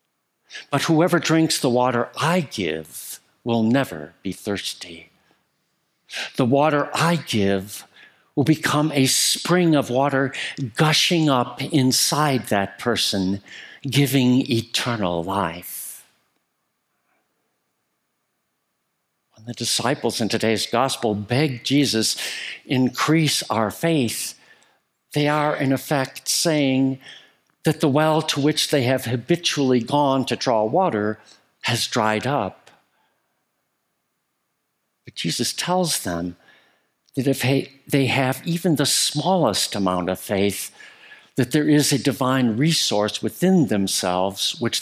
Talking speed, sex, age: 110 wpm, male, 60-79